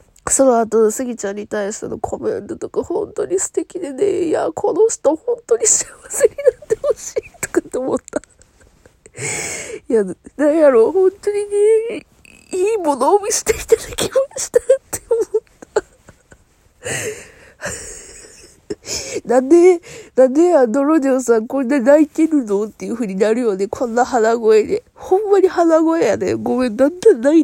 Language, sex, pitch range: Japanese, female, 230-385 Hz